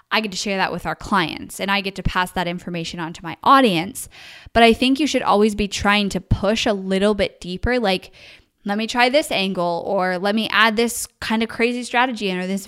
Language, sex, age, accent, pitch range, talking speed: English, female, 10-29, American, 195-230 Hz, 240 wpm